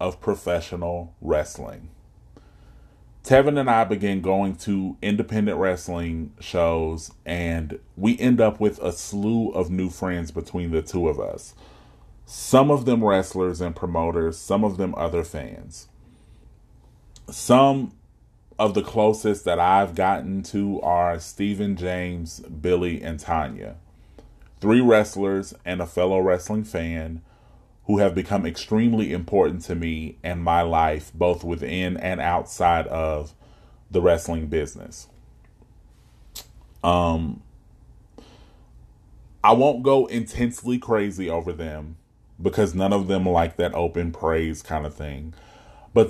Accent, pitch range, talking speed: American, 85-105 Hz, 125 wpm